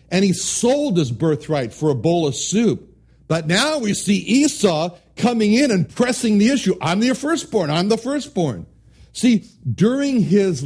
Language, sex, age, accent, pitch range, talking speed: English, male, 60-79, American, 140-210 Hz, 170 wpm